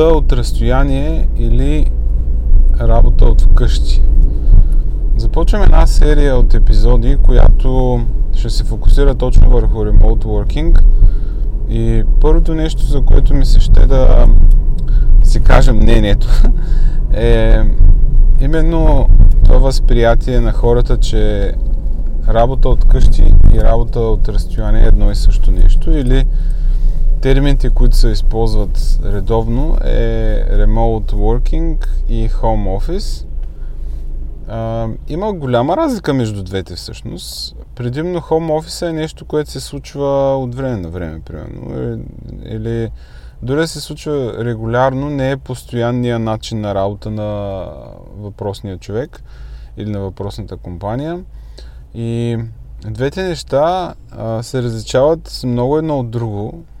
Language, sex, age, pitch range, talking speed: Bulgarian, male, 20-39, 100-130 Hz, 115 wpm